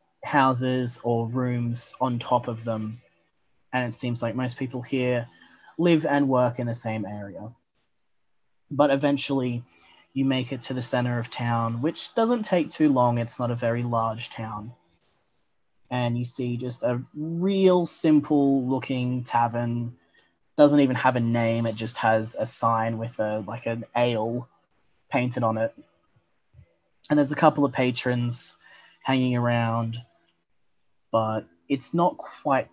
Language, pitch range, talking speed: English, 115-130 Hz, 150 wpm